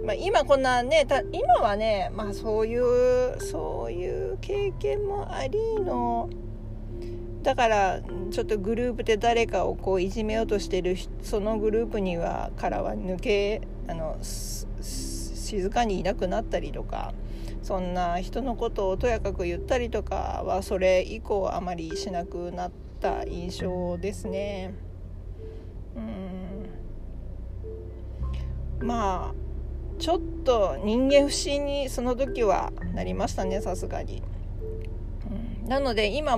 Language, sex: Japanese, female